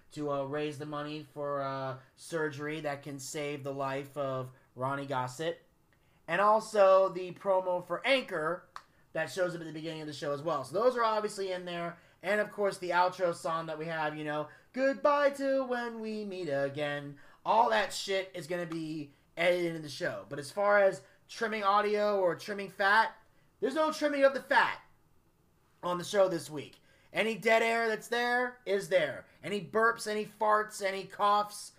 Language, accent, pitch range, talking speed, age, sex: English, American, 155-210 Hz, 190 wpm, 30-49, male